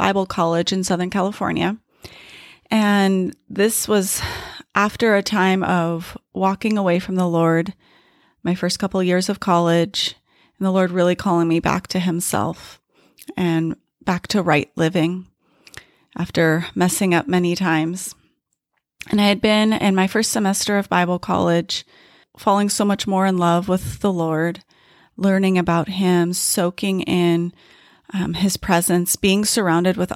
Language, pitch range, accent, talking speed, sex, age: English, 170-195 Hz, American, 145 wpm, female, 30-49